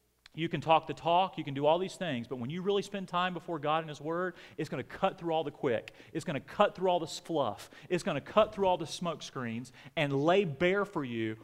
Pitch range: 135-185 Hz